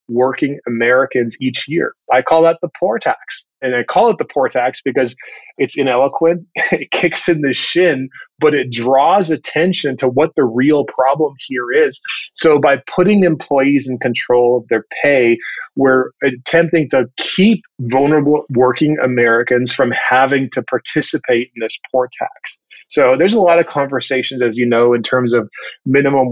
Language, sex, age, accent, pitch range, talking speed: English, male, 30-49, American, 125-145 Hz, 165 wpm